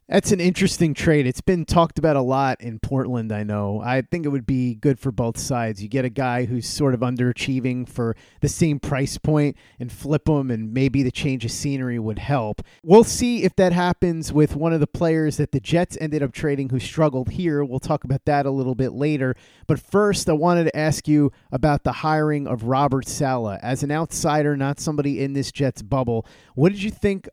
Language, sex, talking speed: English, male, 220 wpm